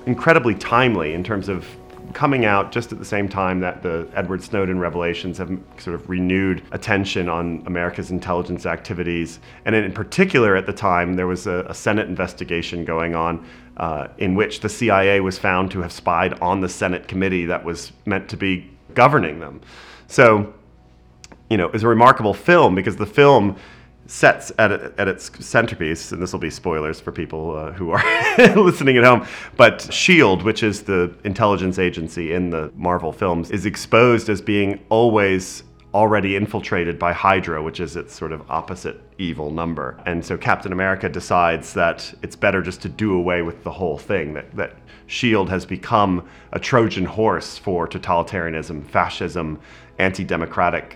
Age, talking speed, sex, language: 30-49, 170 wpm, male, English